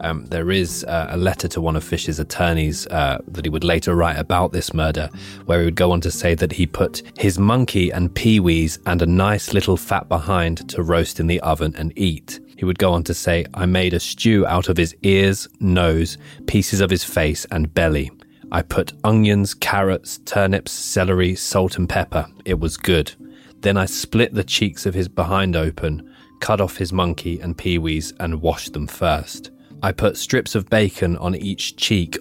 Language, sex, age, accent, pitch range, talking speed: English, male, 20-39, British, 80-95 Hz, 200 wpm